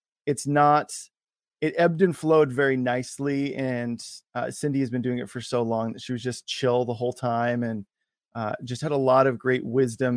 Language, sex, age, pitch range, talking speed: English, male, 20-39, 125-150 Hz, 205 wpm